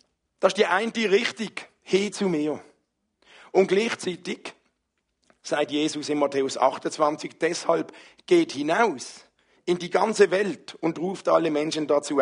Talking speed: 135 wpm